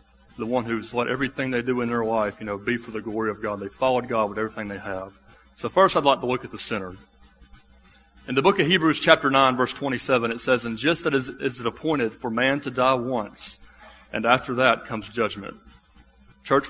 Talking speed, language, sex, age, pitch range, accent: 225 wpm, English, male, 30-49, 100-130 Hz, American